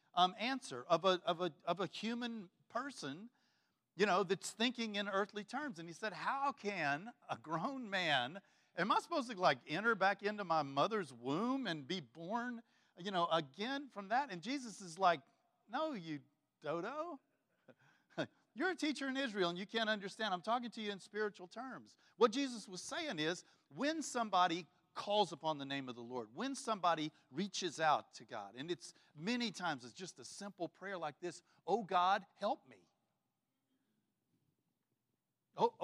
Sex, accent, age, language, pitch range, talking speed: male, American, 50-69, English, 170-230 Hz, 170 wpm